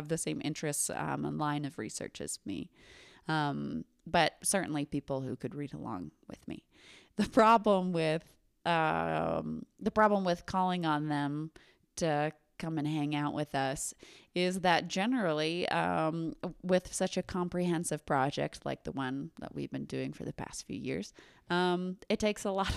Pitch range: 145-185 Hz